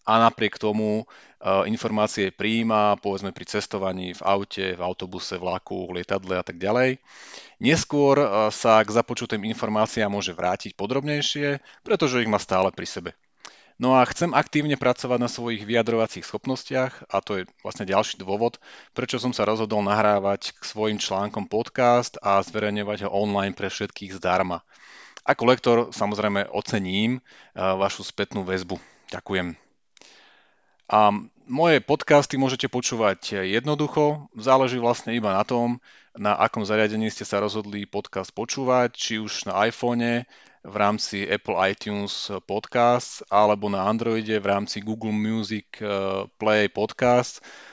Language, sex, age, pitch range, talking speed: Slovak, male, 30-49, 100-125 Hz, 135 wpm